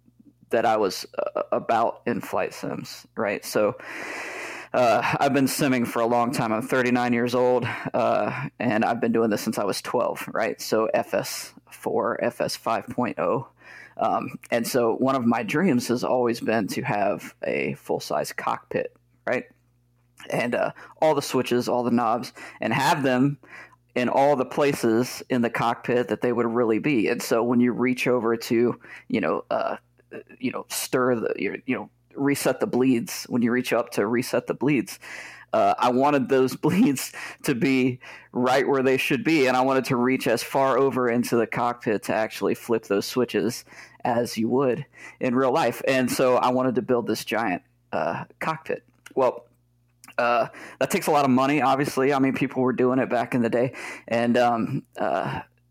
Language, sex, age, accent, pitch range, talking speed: English, male, 20-39, American, 120-130 Hz, 185 wpm